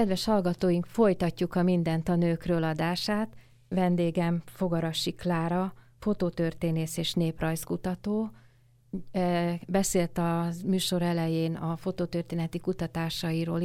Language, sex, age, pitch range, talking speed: Hungarian, female, 30-49, 155-180 Hz, 90 wpm